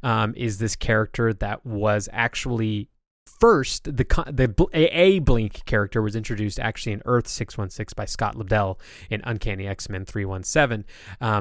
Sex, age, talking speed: male, 20-39, 135 wpm